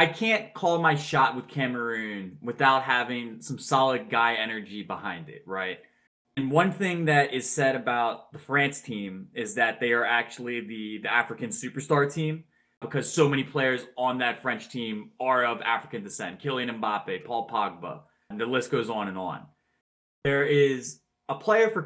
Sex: male